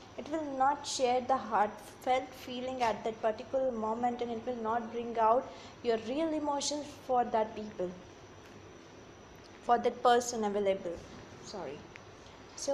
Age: 20-39